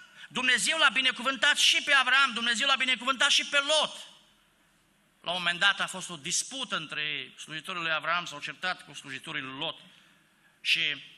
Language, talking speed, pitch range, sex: Romanian, 170 wpm, 145-180 Hz, male